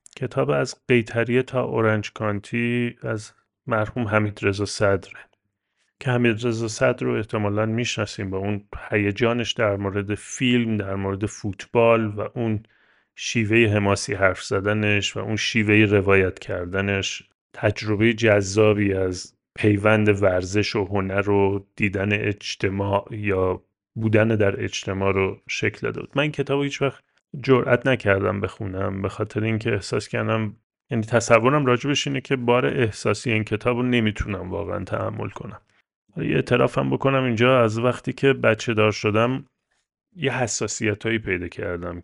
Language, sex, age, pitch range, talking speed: Persian, male, 30-49, 100-120 Hz, 135 wpm